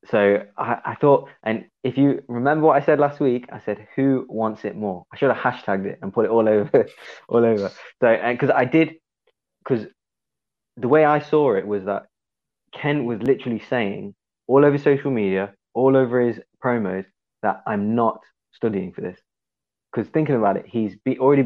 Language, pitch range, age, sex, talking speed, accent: English, 100-130 Hz, 20-39, male, 190 wpm, British